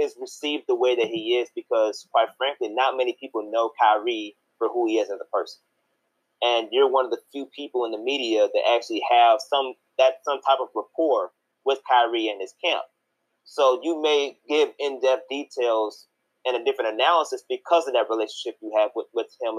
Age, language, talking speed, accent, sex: 30-49, English, 200 wpm, American, male